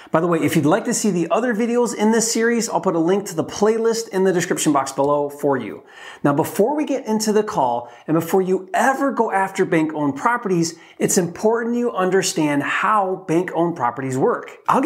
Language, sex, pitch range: English, male, 155-220 Hz